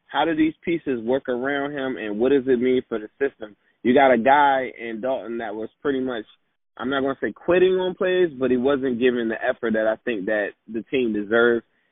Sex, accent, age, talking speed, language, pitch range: male, American, 20-39, 230 wpm, English, 115-140 Hz